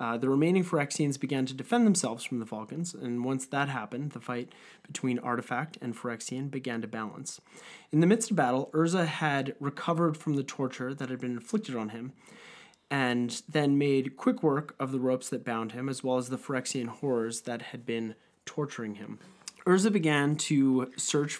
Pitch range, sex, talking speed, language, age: 120-155 Hz, male, 190 wpm, English, 30-49